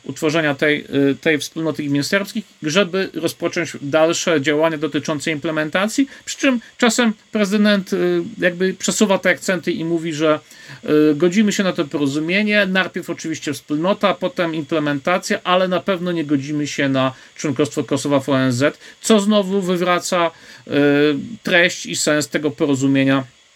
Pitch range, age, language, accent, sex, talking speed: 150-190 Hz, 50-69, Polish, native, male, 130 wpm